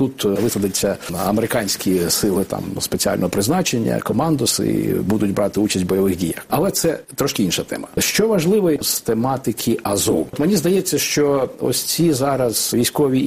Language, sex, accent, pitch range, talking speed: Ukrainian, male, native, 115-150 Hz, 145 wpm